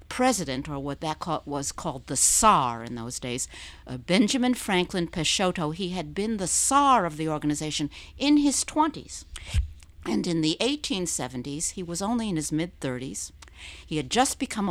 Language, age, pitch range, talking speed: English, 60-79, 145-205 Hz, 160 wpm